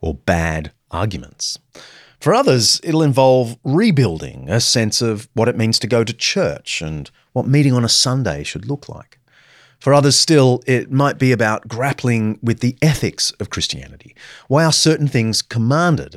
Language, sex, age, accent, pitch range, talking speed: English, male, 40-59, Australian, 115-145 Hz, 165 wpm